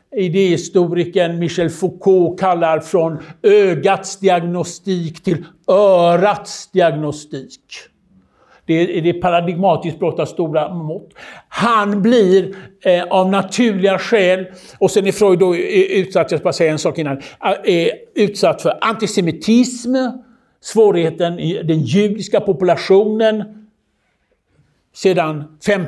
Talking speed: 75 wpm